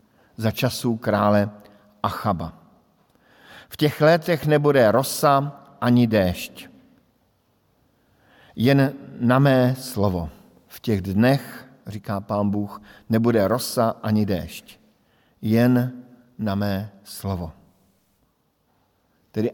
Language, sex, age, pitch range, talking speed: Slovak, male, 50-69, 110-130 Hz, 90 wpm